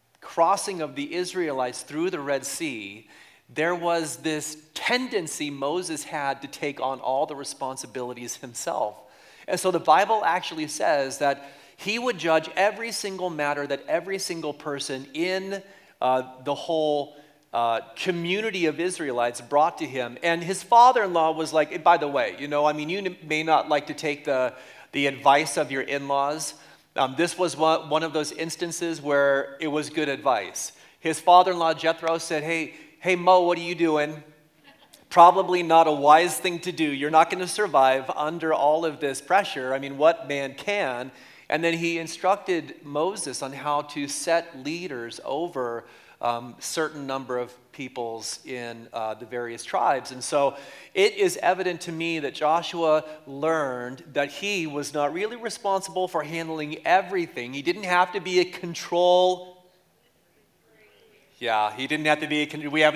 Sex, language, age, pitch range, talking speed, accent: male, English, 40-59, 140-175 Hz, 165 wpm, American